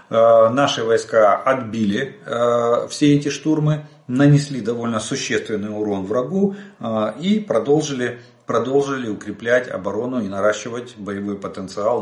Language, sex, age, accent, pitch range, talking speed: Russian, male, 40-59, native, 105-150 Hz, 110 wpm